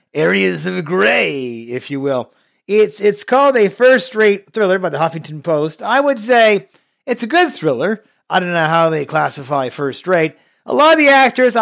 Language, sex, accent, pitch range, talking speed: English, male, American, 160-230 Hz, 180 wpm